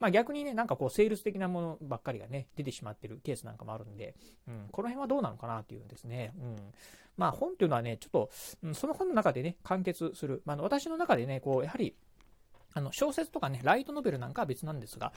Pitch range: 125-200 Hz